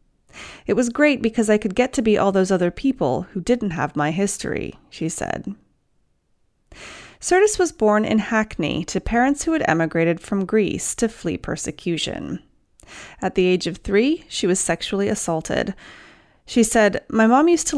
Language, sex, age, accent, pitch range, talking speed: English, female, 30-49, American, 175-245 Hz, 170 wpm